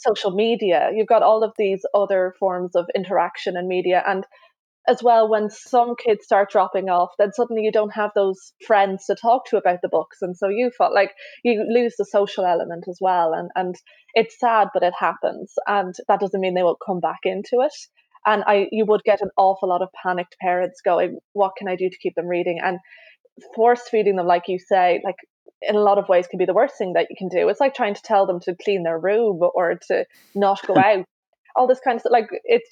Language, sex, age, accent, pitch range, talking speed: English, female, 20-39, British, 185-220 Hz, 235 wpm